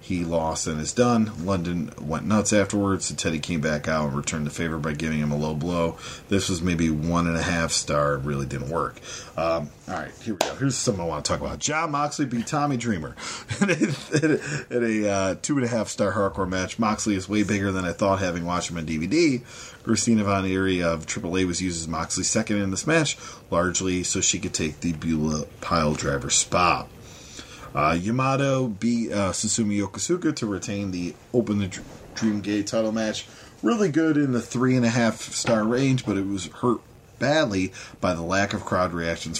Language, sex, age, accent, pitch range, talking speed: English, male, 40-59, American, 85-115 Hz, 205 wpm